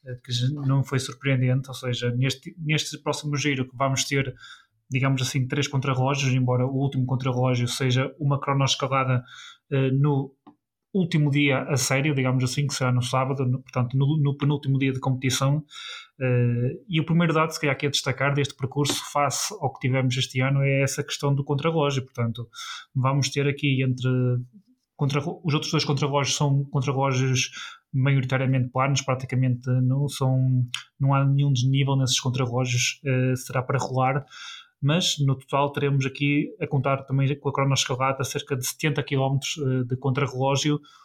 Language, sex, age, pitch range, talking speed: Portuguese, male, 20-39, 130-145 Hz, 165 wpm